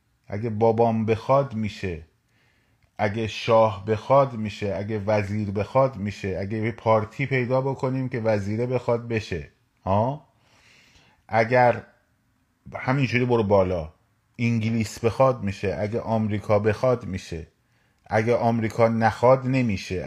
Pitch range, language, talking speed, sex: 100-120 Hz, Persian, 110 wpm, male